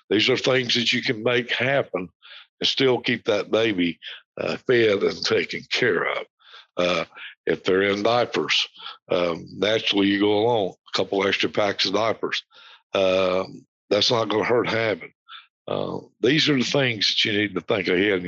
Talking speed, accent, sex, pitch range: 175 wpm, American, male, 100-130 Hz